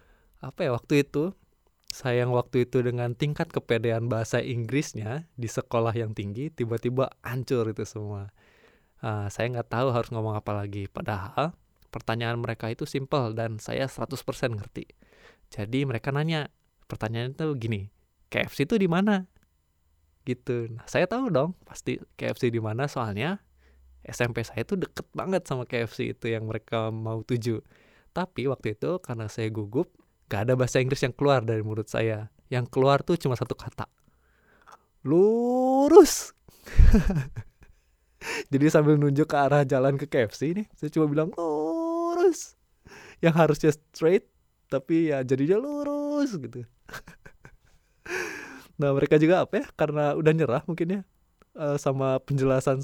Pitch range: 115-155 Hz